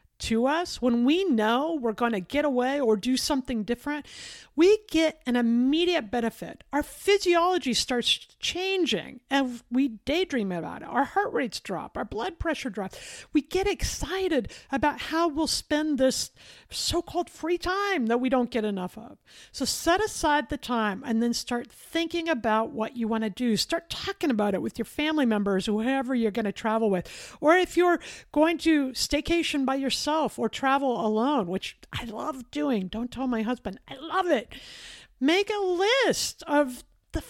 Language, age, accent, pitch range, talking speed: English, 50-69, American, 225-310 Hz, 175 wpm